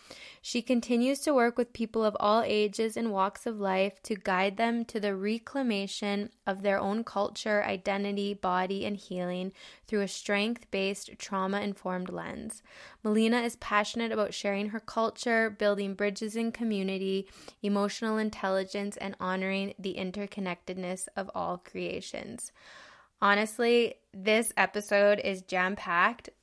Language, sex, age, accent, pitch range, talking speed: English, female, 10-29, American, 195-225 Hz, 130 wpm